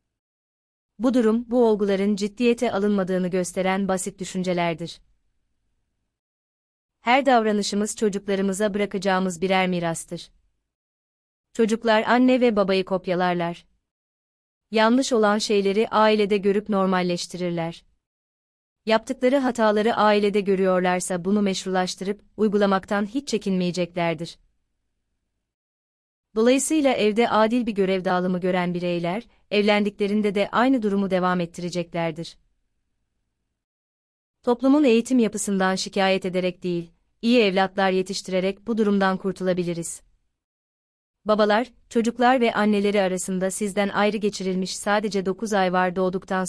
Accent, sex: native, female